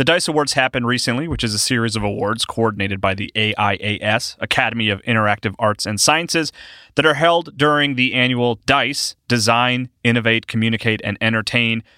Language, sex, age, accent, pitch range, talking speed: English, male, 30-49, American, 110-145 Hz, 165 wpm